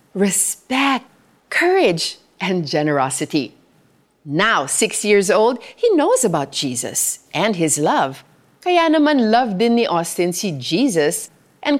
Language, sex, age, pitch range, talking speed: Filipino, female, 40-59, 175-270 Hz, 115 wpm